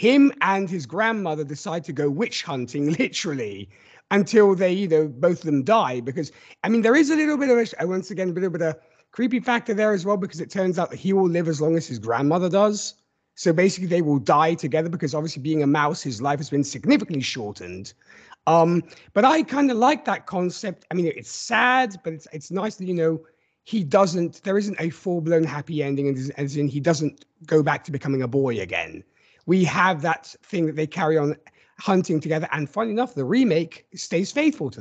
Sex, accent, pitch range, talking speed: male, British, 145-195 Hz, 220 wpm